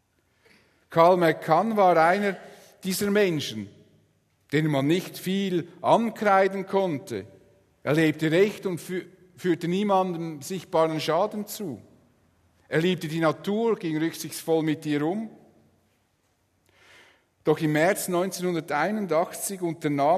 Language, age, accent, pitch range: English, 50-69, Austrian, 105-165 Hz